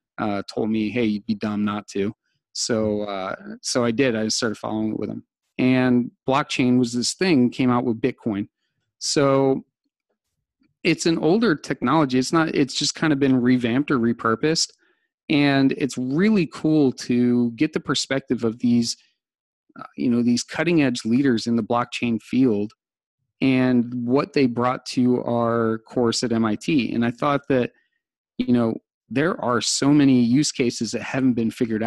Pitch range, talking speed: 115-145 Hz, 170 wpm